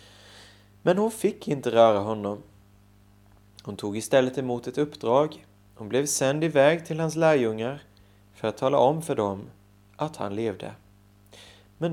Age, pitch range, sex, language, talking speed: 30-49, 100-140 Hz, male, Swedish, 145 wpm